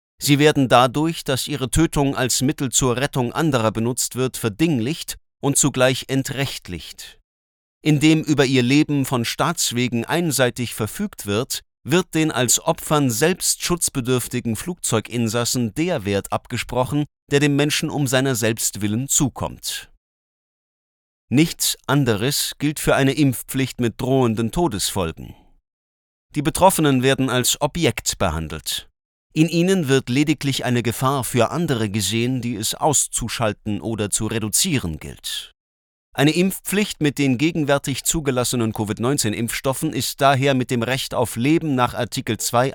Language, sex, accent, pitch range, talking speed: German, male, German, 115-145 Hz, 130 wpm